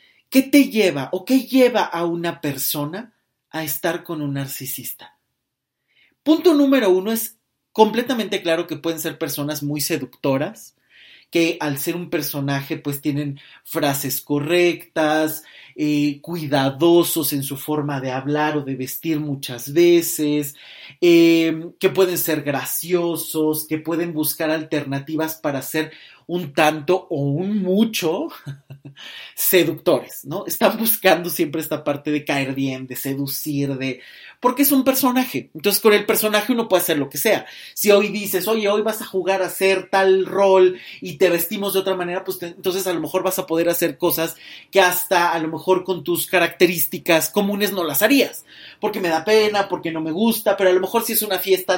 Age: 30-49